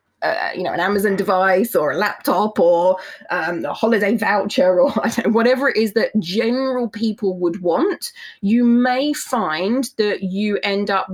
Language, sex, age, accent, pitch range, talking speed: English, female, 20-39, British, 190-255 Hz, 160 wpm